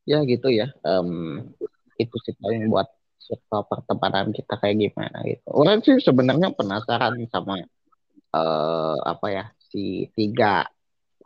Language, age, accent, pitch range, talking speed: Indonesian, 20-39, native, 105-130 Hz, 130 wpm